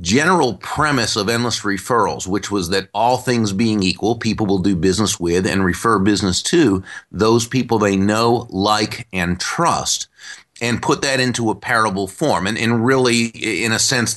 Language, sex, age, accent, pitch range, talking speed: English, male, 30-49, American, 100-120 Hz, 175 wpm